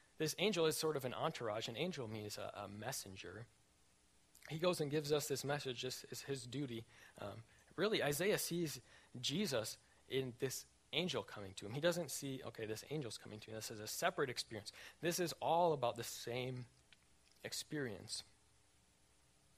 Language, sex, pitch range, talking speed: English, male, 100-155 Hz, 170 wpm